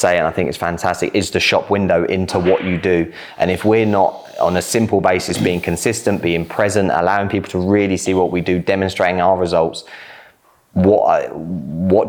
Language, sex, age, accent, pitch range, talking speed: English, male, 20-39, British, 85-100 Hz, 190 wpm